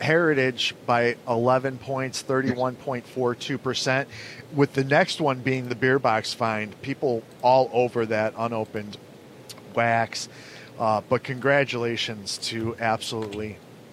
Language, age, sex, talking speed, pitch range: English, 40-59, male, 110 wpm, 115-130 Hz